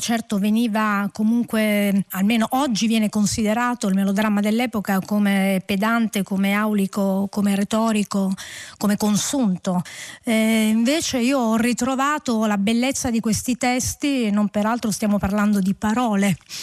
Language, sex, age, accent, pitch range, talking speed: Italian, female, 30-49, native, 205-255 Hz, 120 wpm